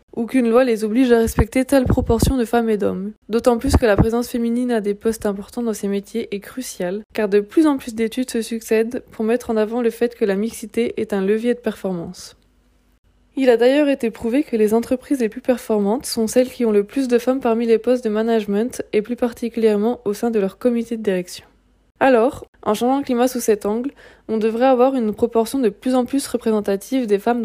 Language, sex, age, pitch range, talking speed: French, female, 20-39, 210-245 Hz, 225 wpm